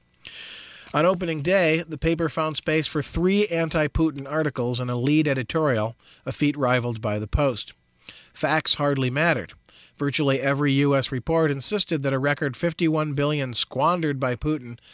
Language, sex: English, male